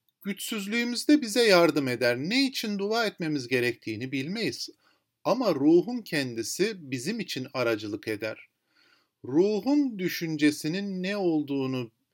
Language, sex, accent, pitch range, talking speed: Turkish, male, native, 120-200 Hz, 105 wpm